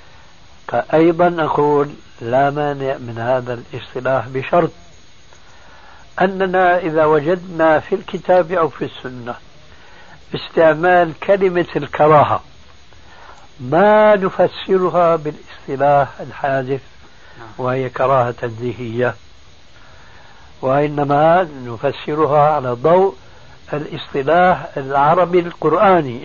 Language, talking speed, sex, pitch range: Arabic, 75 wpm, male, 125-165 Hz